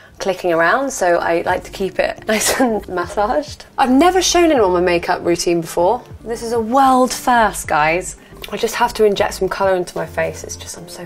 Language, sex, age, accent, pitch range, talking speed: English, female, 20-39, British, 170-215 Hz, 210 wpm